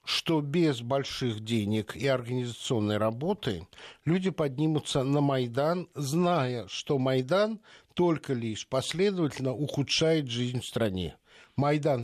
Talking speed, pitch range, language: 110 wpm, 120-160 Hz, Russian